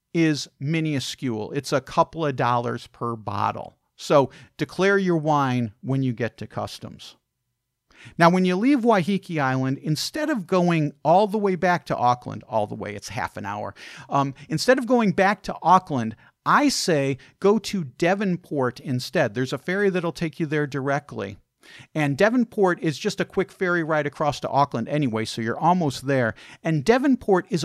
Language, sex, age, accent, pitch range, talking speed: English, male, 50-69, American, 130-175 Hz, 175 wpm